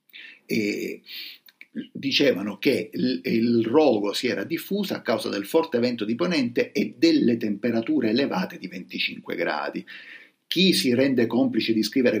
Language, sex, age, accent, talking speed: Italian, male, 50-69, native, 140 wpm